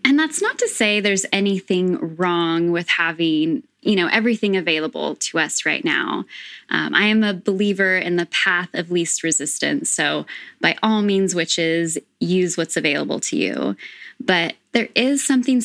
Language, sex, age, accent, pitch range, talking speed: English, female, 10-29, American, 175-225 Hz, 165 wpm